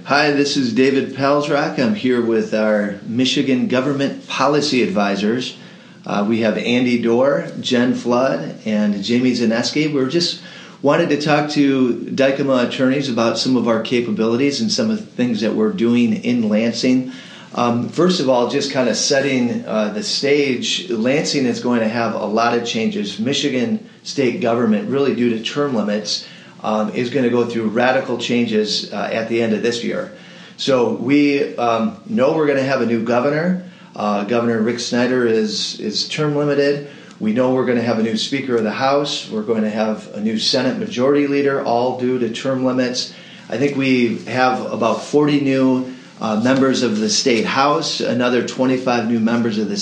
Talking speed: 185 wpm